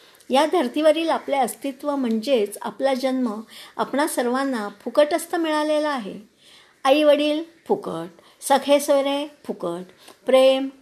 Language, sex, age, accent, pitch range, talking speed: Marathi, male, 50-69, native, 230-290 Hz, 100 wpm